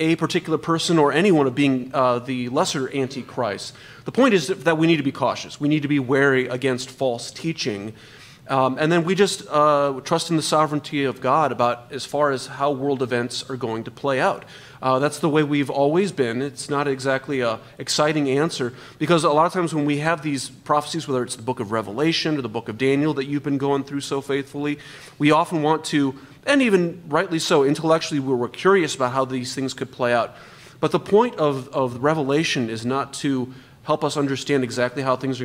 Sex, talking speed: male, 215 wpm